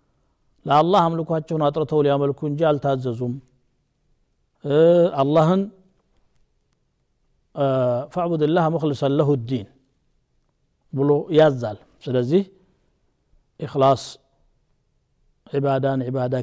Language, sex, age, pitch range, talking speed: Amharic, male, 60-79, 130-170 Hz, 85 wpm